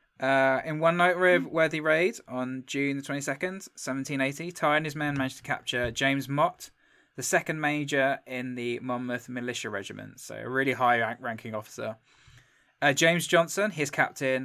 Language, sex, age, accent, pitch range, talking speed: English, male, 20-39, British, 125-155 Hz, 155 wpm